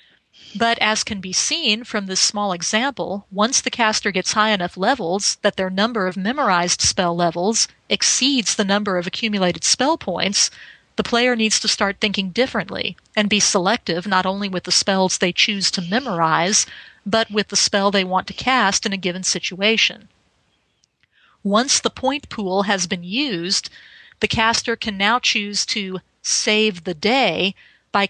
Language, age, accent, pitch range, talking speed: English, 40-59, American, 185-225 Hz, 165 wpm